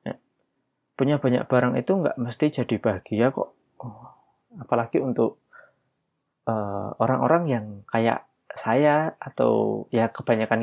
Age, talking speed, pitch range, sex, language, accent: 20-39, 105 wpm, 110-140 Hz, male, Indonesian, native